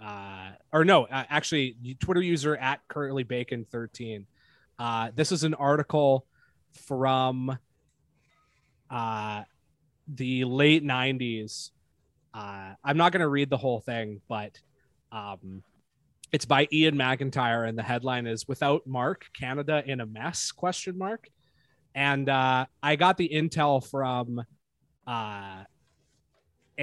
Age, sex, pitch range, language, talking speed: 20-39, male, 115-145 Hz, English, 125 wpm